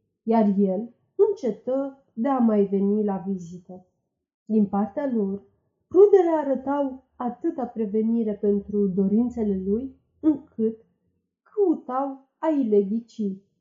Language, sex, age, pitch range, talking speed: Romanian, female, 40-59, 210-270 Hz, 95 wpm